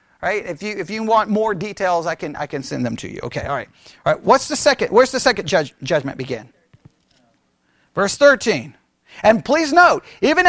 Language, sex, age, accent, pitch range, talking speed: English, male, 40-59, American, 215-295 Hz, 210 wpm